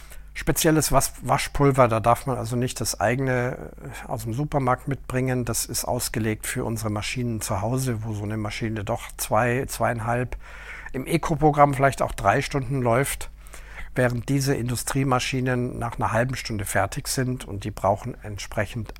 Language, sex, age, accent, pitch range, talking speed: German, male, 50-69, German, 105-140 Hz, 150 wpm